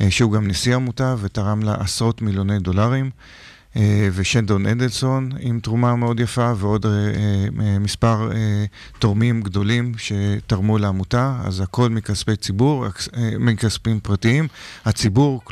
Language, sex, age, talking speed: Hebrew, male, 40-59, 110 wpm